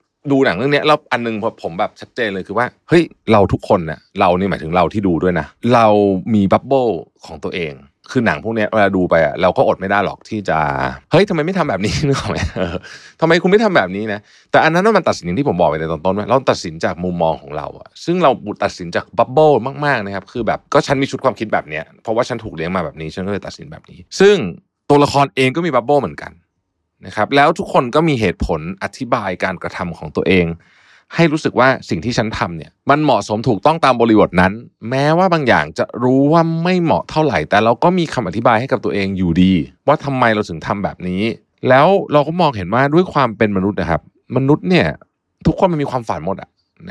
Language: Thai